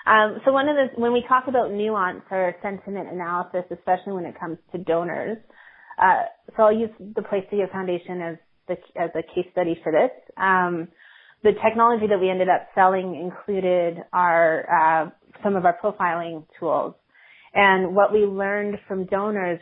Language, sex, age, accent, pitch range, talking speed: English, female, 30-49, American, 175-200 Hz, 175 wpm